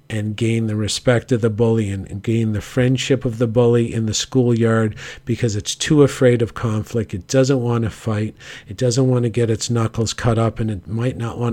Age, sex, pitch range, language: 50-69, male, 110-130 Hz, English